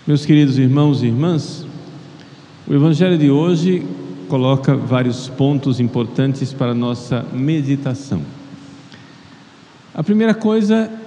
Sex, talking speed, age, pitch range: male, 110 wpm, 50-69, 125-155 Hz